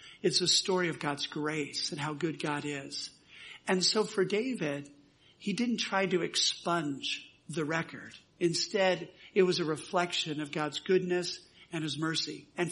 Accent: American